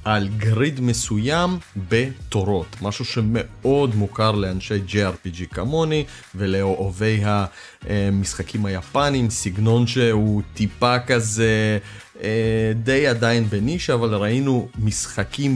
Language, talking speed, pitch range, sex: Hebrew, 90 wpm, 105-130 Hz, male